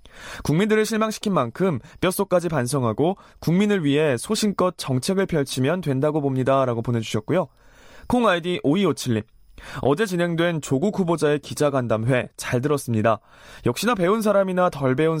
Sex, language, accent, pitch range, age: male, Korean, native, 130-185 Hz, 20-39